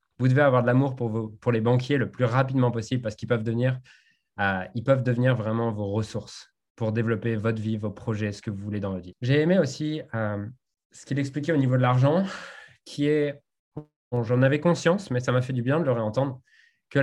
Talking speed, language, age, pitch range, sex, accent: 230 wpm, French, 20-39, 115-140 Hz, male, French